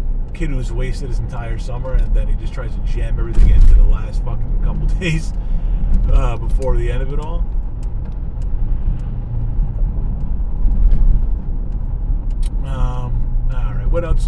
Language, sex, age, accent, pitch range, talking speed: English, male, 30-49, American, 80-125 Hz, 140 wpm